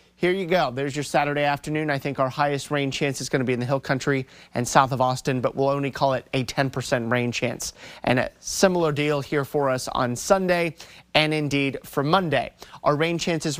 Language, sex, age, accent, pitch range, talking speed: English, male, 30-49, American, 140-175 Hz, 220 wpm